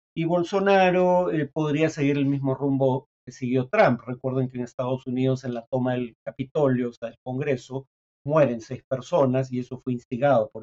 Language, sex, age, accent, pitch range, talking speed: Spanish, male, 50-69, Mexican, 125-145 Hz, 185 wpm